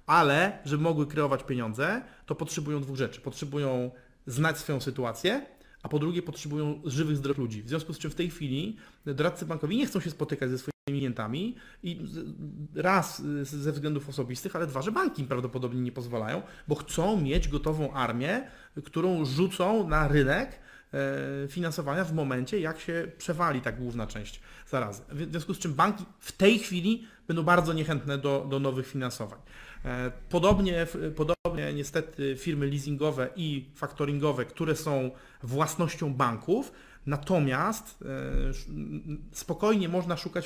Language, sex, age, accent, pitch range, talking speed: Polish, male, 30-49, native, 135-170 Hz, 145 wpm